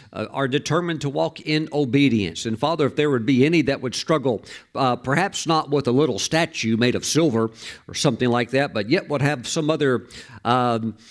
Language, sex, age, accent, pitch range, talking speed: English, male, 50-69, American, 115-160 Hz, 200 wpm